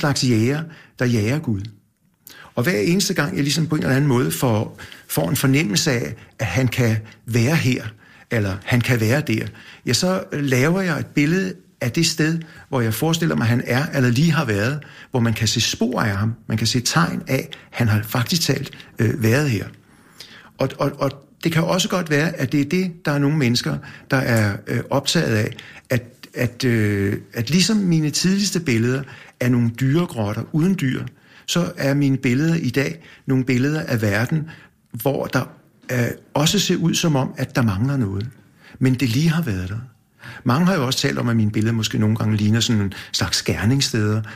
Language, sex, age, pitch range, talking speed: Danish, male, 60-79, 110-145 Hz, 205 wpm